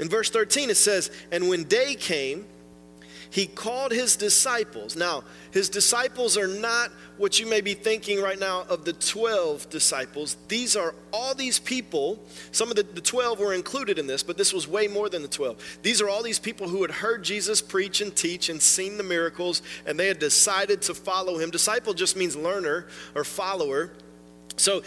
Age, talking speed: 40-59, 195 wpm